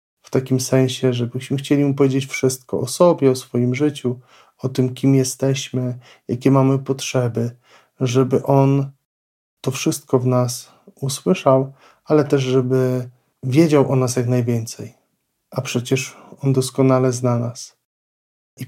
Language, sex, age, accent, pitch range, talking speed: Polish, male, 40-59, native, 125-140 Hz, 135 wpm